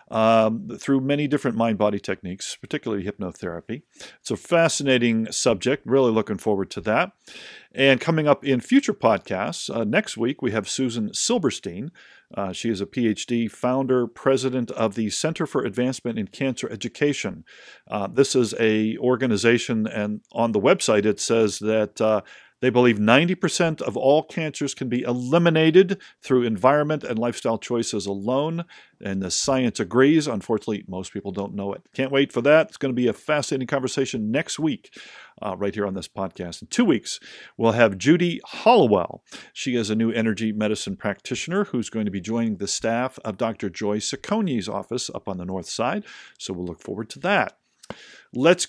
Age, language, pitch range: 50-69, English, 105-140 Hz